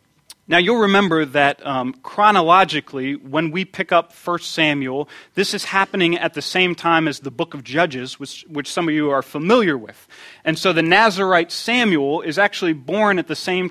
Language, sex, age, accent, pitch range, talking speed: English, male, 30-49, American, 145-180 Hz, 190 wpm